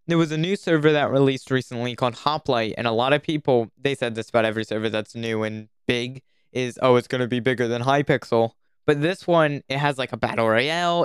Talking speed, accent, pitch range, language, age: 235 wpm, American, 120-155 Hz, English, 10-29